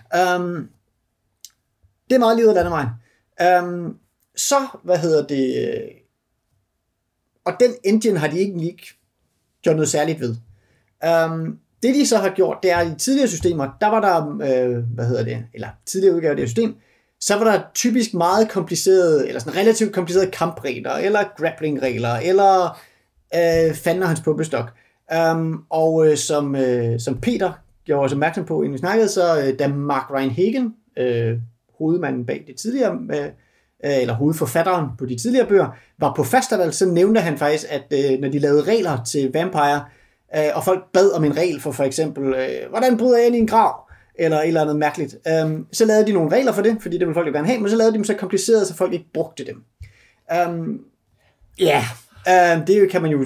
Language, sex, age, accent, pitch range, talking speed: Danish, male, 30-49, native, 140-195 Hz, 190 wpm